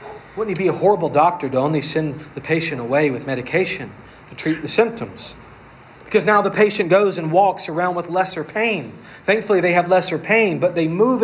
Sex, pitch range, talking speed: male, 135-195 Hz, 200 wpm